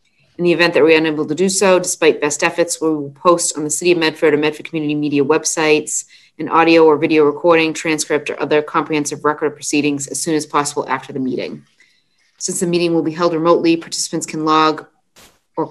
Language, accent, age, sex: English, American, 30-49, female